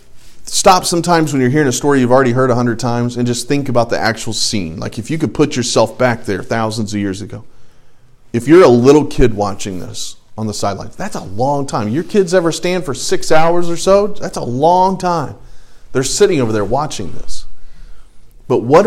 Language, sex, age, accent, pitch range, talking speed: English, male, 40-59, American, 120-165 Hz, 215 wpm